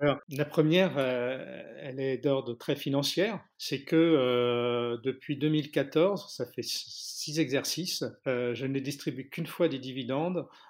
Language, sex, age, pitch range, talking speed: French, male, 50-69, 125-150 Hz, 140 wpm